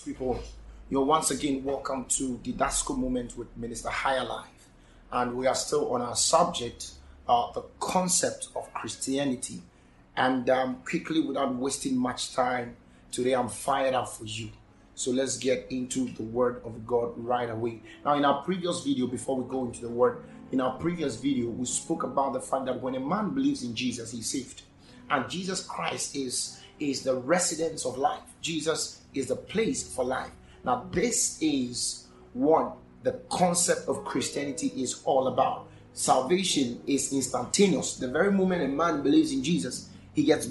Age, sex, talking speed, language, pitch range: 30-49, male, 175 wpm, English, 120-165 Hz